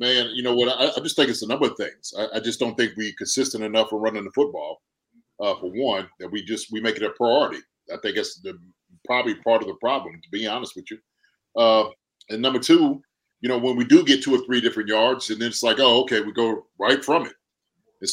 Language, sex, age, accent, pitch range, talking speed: English, male, 30-49, American, 115-150 Hz, 250 wpm